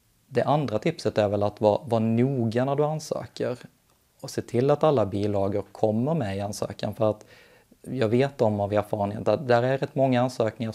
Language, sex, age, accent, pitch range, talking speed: Swedish, male, 30-49, native, 110-130 Hz, 195 wpm